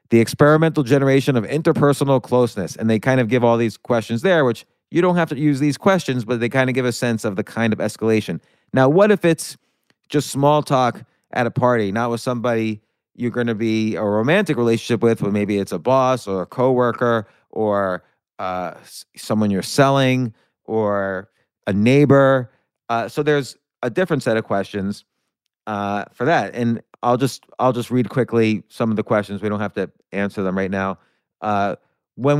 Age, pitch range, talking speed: 30-49, 110-135 Hz, 195 wpm